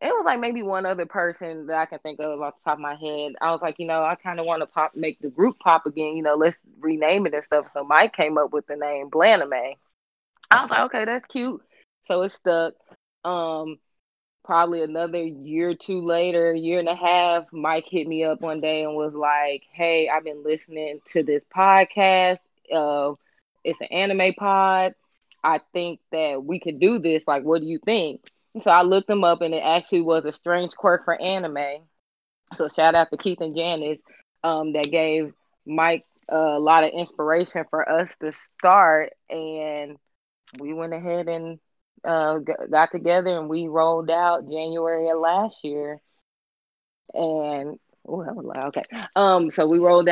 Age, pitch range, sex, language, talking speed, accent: 20-39, 155-175 Hz, female, English, 195 wpm, American